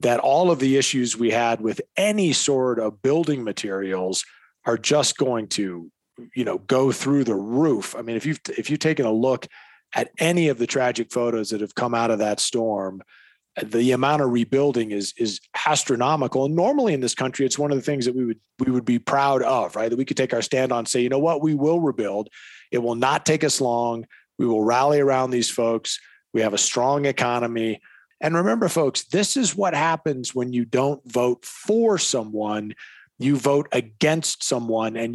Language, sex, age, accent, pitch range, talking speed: English, male, 40-59, American, 120-145 Hz, 205 wpm